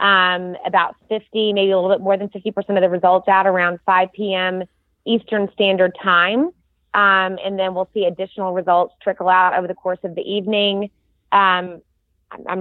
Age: 30-49